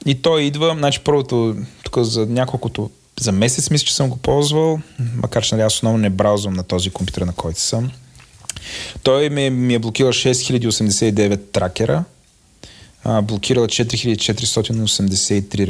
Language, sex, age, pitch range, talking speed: Bulgarian, male, 30-49, 105-130 Hz, 140 wpm